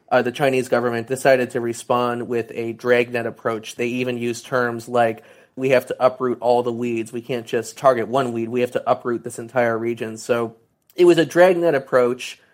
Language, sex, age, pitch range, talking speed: English, male, 30-49, 115-130 Hz, 200 wpm